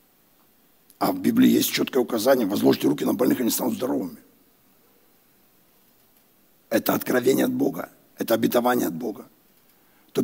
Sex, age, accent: male, 60-79, native